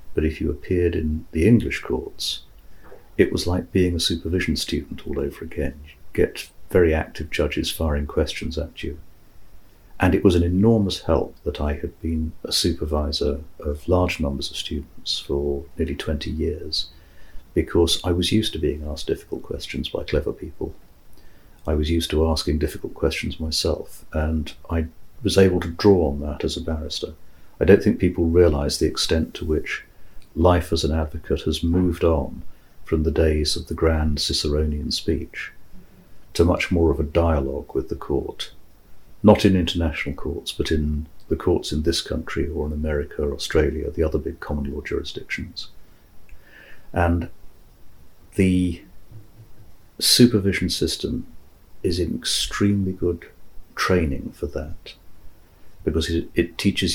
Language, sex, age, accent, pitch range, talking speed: English, male, 50-69, British, 75-90 Hz, 155 wpm